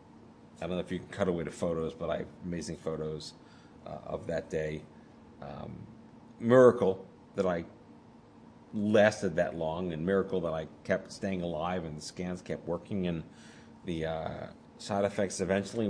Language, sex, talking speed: English, male, 165 wpm